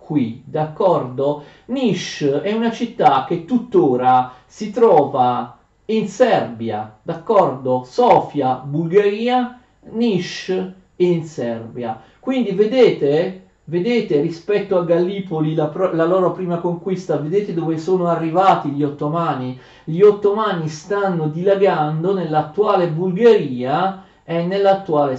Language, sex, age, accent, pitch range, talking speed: Italian, male, 50-69, native, 140-185 Hz, 105 wpm